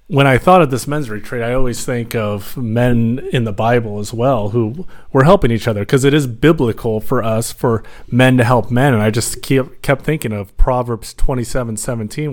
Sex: male